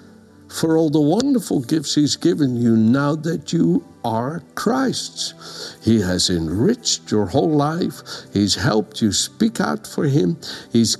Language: English